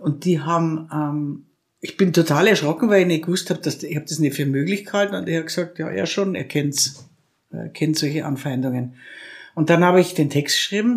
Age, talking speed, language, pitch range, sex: 60-79, 225 wpm, German, 150-180 Hz, female